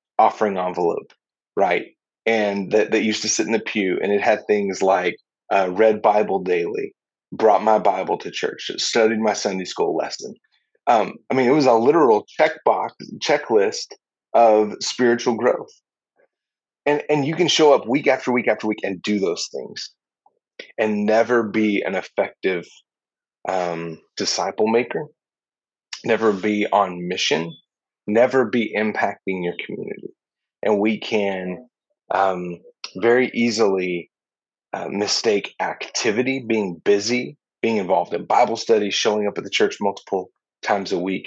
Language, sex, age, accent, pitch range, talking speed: English, male, 30-49, American, 95-130 Hz, 145 wpm